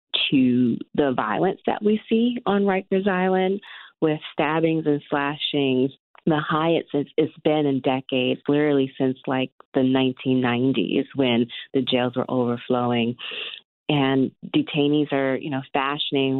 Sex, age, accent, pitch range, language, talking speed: female, 30-49, American, 130-155 Hz, English, 130 wpm